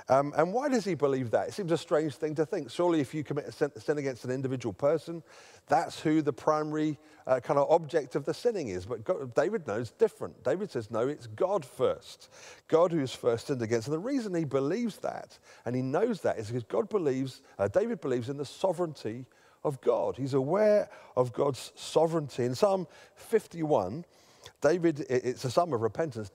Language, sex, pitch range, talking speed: English, male, 125-170 Hz, 200 wpm